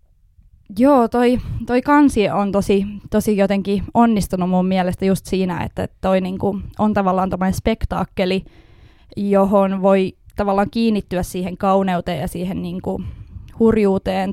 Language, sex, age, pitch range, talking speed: Finnish, female, 20-39, 180-205 Hz, 115 wpm